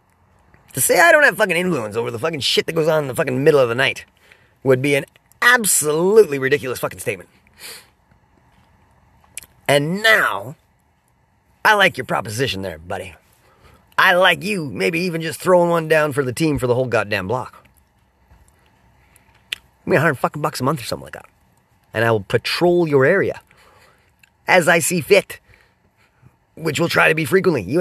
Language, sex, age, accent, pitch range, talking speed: English, male, 30-49, American, 130-175 Hz, 175 wpm